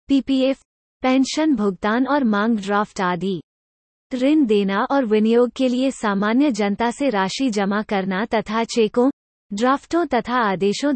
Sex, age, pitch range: female, 30-49, 200-260 Hz